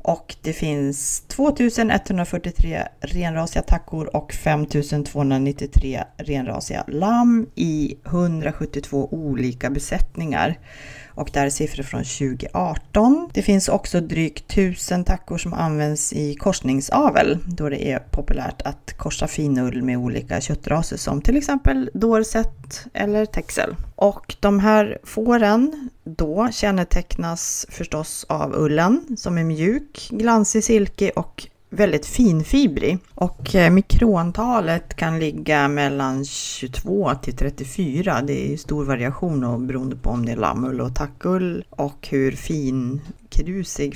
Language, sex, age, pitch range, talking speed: Swedish, female, 30-49, 140-205 Hz, 120 wpm